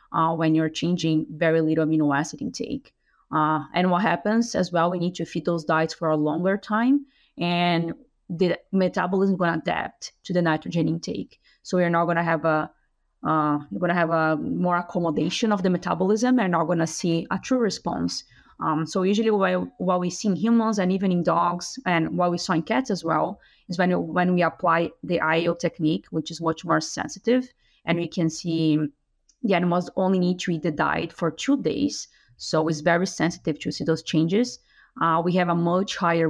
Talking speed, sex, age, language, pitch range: 205 wpm, female, 30-49, English, 160-180 Hz